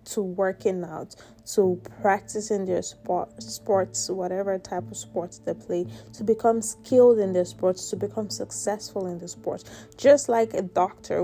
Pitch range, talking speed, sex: 155-200 Hz, 160 wpm, female